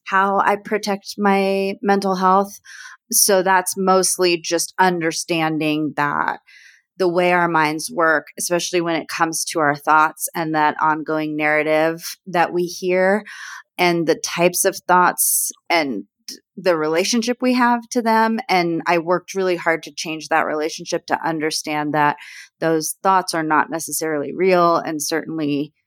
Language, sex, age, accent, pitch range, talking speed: English, female, 30-49, American, 155-195 Hz, 145 wpm